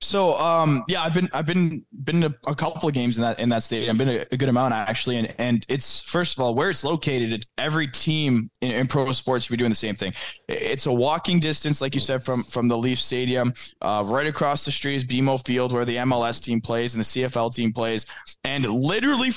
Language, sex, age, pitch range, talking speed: English, male, 20-39, 125-165 Hz, 240 wpm